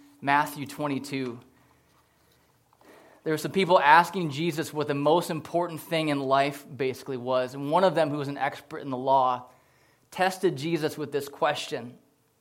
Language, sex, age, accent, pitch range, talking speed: English, male, 20-39, American, 140-180 Hz, 160 wpm